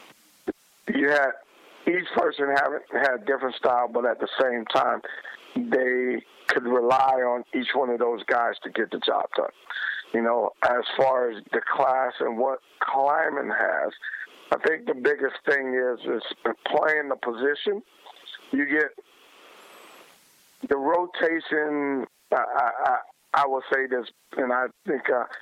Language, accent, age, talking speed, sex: English, American, 50-69, 145 wpm, male